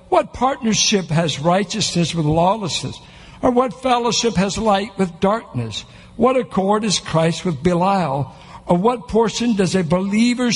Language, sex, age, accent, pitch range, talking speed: English, male, 60-79, American, 155-220 Hz, 140 wpm